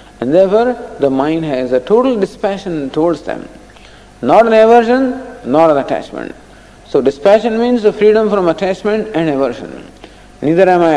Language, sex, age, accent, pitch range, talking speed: English, male, 50-69, Indian, 140-215 Hz, 155 wpm